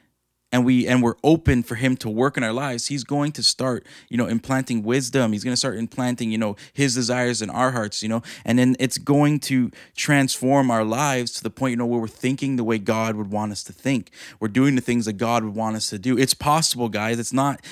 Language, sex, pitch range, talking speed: English, male, 110-135 Hz, 245 wpm